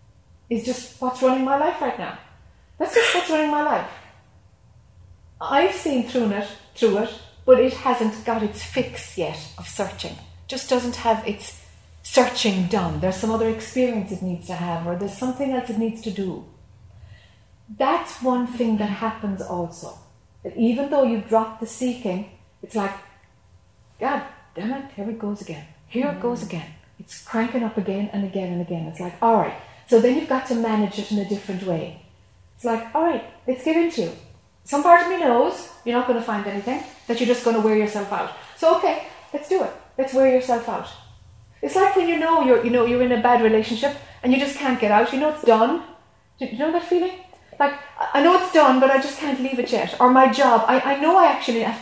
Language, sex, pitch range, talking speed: English, female, 200-270 Hz, 210 wpm